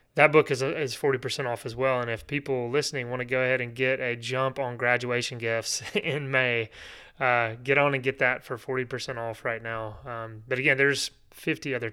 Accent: American